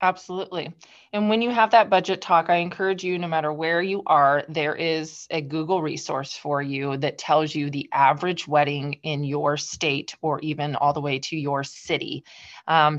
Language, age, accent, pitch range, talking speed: English, 20-39, American, 145-185 Hz, 190 wpm